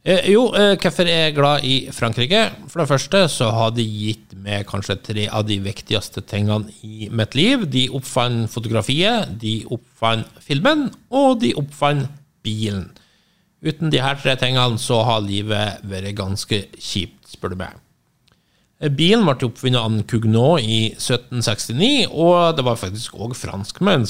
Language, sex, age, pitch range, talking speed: English, male, 50-69, 105-140 Hz, 150 wpm